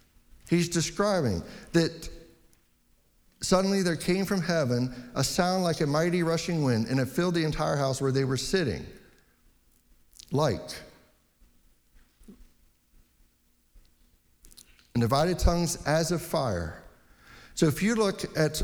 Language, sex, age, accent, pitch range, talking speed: English, male, 60-79, American, 125-170 Hz, 120 wpm